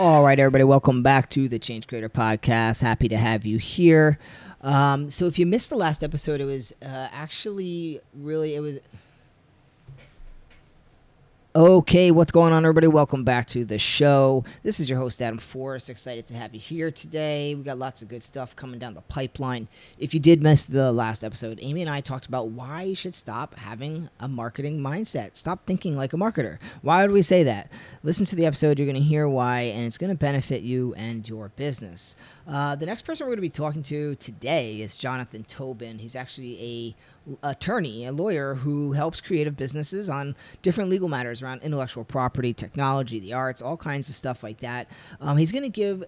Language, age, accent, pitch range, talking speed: English, 30-49, American, 125-155 Hz, 200 wpm